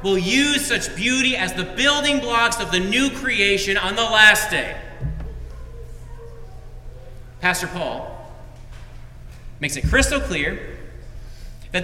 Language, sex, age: English, male, 40-59